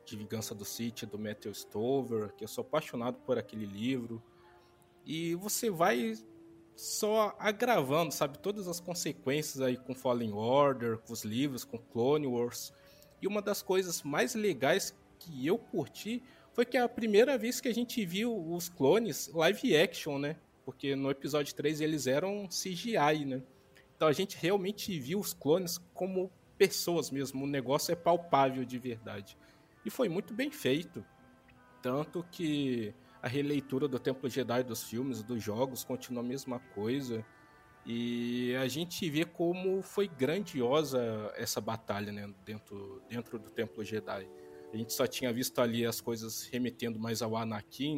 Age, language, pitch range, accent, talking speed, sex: 20-39, Portuguese, 115-165 Hz, Brazilian, 160 wpm, male